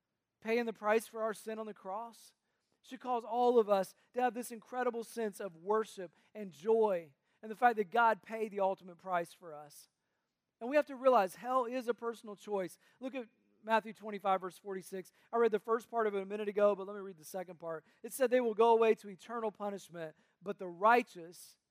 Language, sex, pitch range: English, male, 185-225 Hz